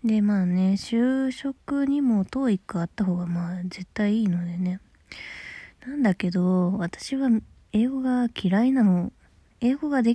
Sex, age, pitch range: female, 20-39, 185-245 Hz